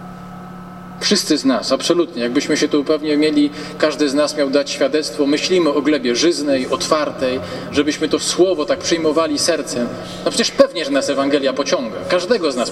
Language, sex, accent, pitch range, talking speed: Polish, male, native, 135-185 Hz, 170 wpm